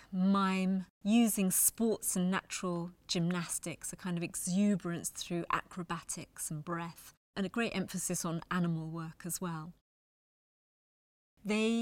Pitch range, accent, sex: 170-195 Hz, British, female